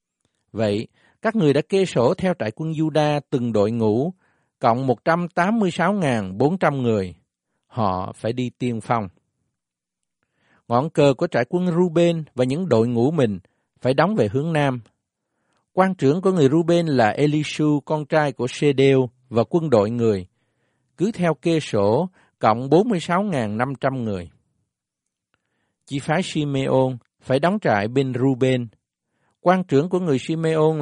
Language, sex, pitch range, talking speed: Vietnamese, male, 120-170 Hz, 140 wpm